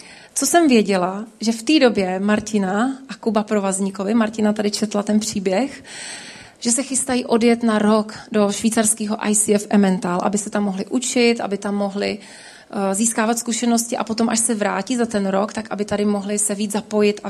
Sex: female